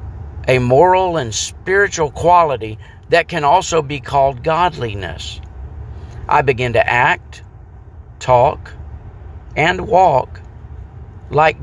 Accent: American